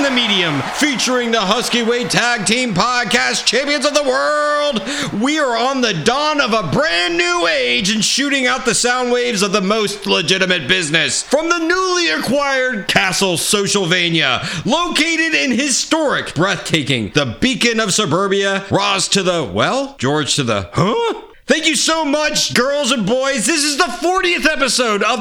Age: 40-59